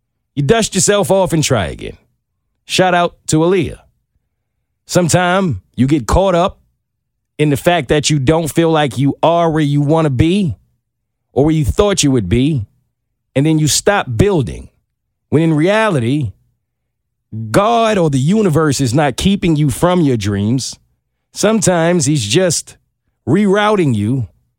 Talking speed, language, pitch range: 150 wpm, English, 120-175 Hz